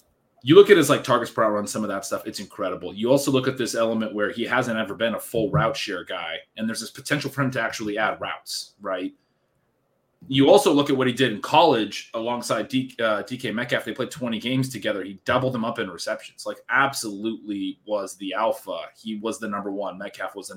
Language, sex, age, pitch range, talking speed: English, male, 30-49, 110-140 Hz, 230 wpm